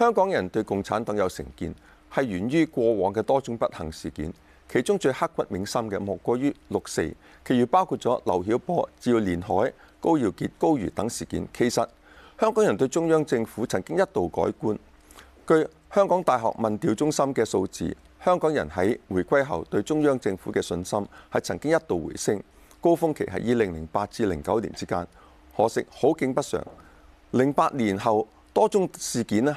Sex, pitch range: male, 100-155 Hz